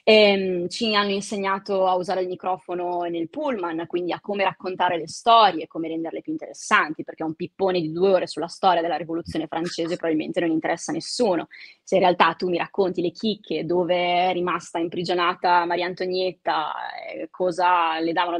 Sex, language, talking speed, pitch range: female, Italian, 185 wpm, 170-200 Hz